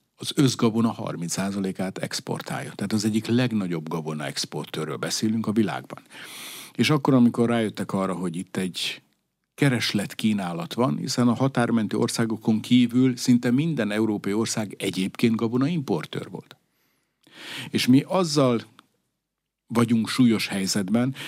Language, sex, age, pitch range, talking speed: Hungarian, male, 50-69, 105-125 Hz, 120 wpm